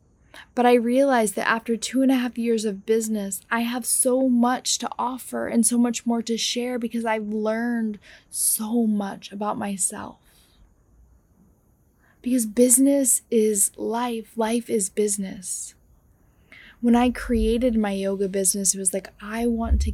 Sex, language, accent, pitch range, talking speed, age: female, English, American, 200-230 Hz, 150 wpm, 10-29